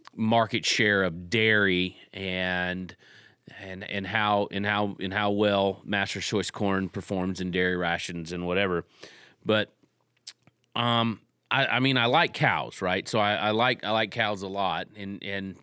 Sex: male